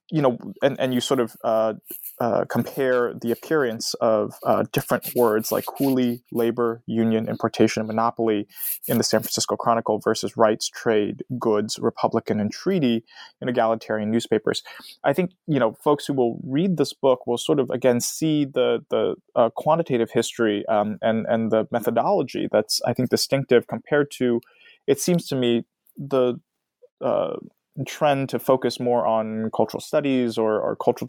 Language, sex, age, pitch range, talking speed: English, male, 20-39, 115-140 Hz, 165 wpm